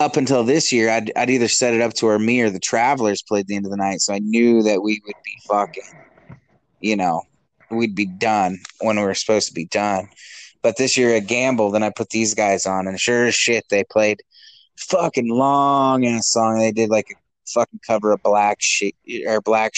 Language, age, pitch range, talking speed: English, 20-39, 105-125 Hz, 225 wpm